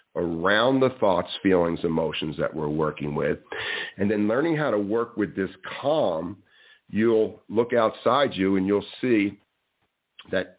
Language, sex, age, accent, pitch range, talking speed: English, male, 50-69, American, 90-115 Hz, 145 wpm